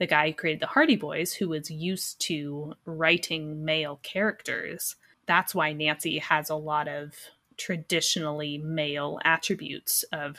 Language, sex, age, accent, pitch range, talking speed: English, female, 20-39, American, 150-185 Hz, 145 wpm